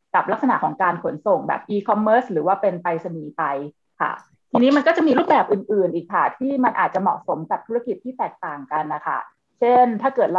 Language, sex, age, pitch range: Thai, female, 20-39, 175-220 Hz